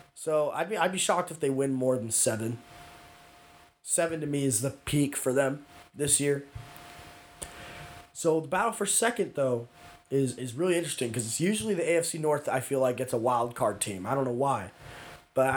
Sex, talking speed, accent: male, 200 wpm, American